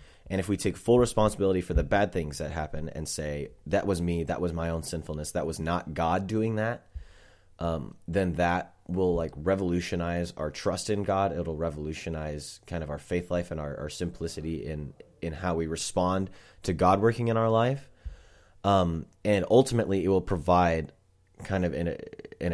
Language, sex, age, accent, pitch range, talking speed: English, male, 30-49, American, 80-95 Hz, 185 wpm